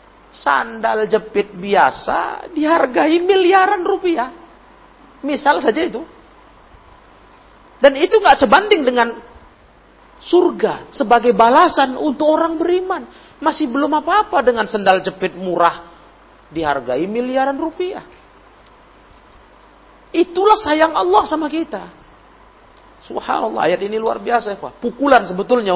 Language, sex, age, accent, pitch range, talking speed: Indonesian, male, 40-59, native, 185-270 Hz, 100 wpm